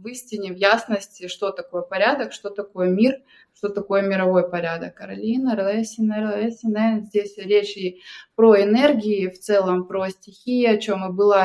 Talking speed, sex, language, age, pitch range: 155 wpm, female, Russian, 20-39, 195-225 Hz